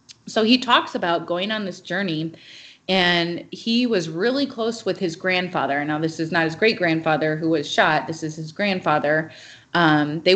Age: 30-49